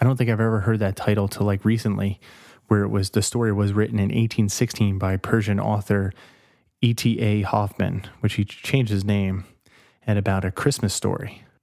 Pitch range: 100-115 Hz